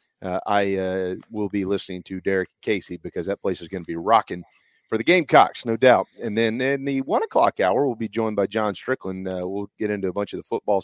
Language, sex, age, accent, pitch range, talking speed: English, male, 30-49, American, 95-105 Hz, 245 wpm